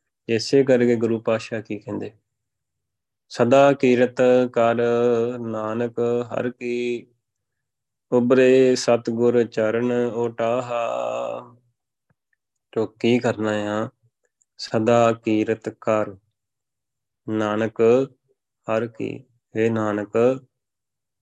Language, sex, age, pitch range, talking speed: Punjabi, male, 20-39, 110-125 Hz, 80 wpm